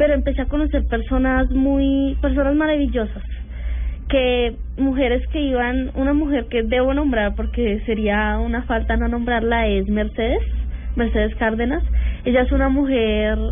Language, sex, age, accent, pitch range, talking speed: Spanish, female, 10-29, Colombian, 220-270 Hz, 140 wpm